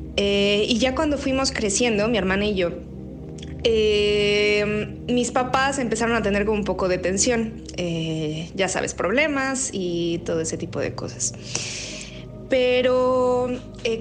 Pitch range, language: 170-225 Hz, English